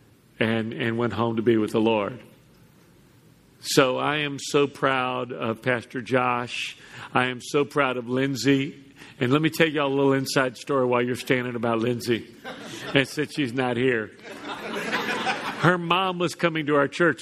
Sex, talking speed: male, 175 wpm